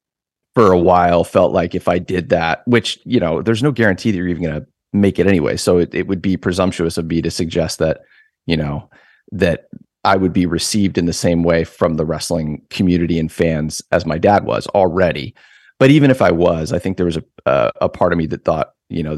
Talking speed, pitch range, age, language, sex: 235 wpm, 85-105 Hz, 30-49, English, male